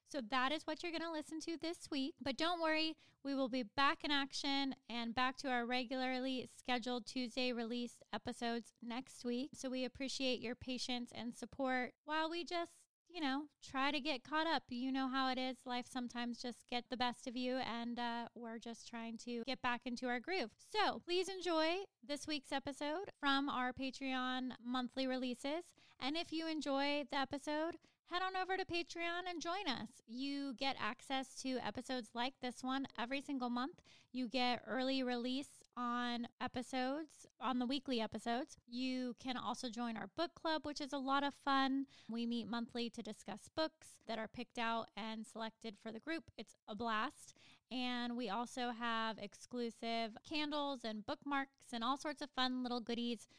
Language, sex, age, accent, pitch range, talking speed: English, female, 10-29, American, 240-280 Hz, 185 wpm